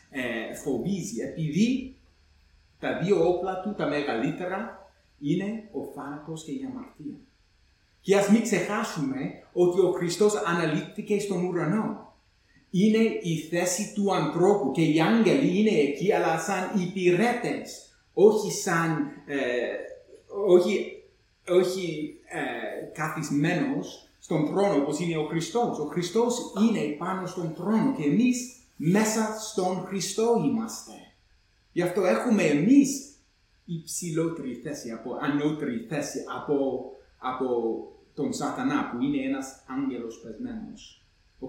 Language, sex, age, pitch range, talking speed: English, male, 30-49, 150-220 Hz, 115 wpm